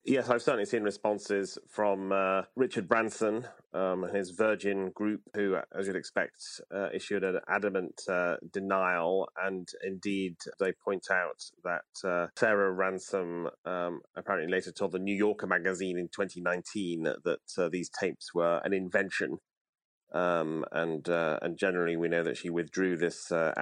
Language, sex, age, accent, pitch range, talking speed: English, male, 30-49, British, 85-95 Hz, 160 wpm